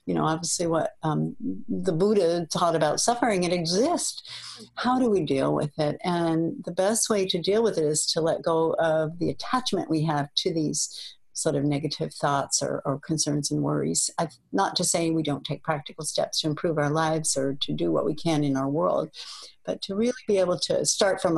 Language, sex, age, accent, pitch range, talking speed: English, female, 60-79, American, 155-195 Hz, 210 wpm